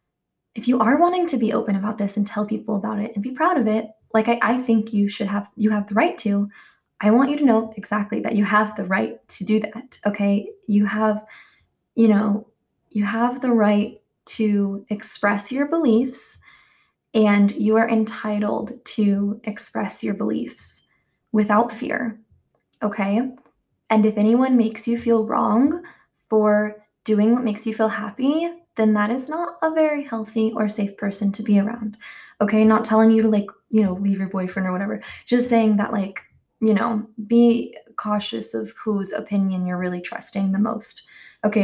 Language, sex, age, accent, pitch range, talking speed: English, female, 20-39, American, 205-230 Hz, 180 wpm